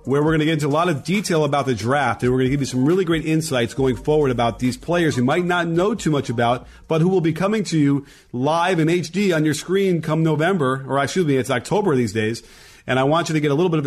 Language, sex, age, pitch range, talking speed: English, male, 30-49, 125-160 Hz, 290 wpm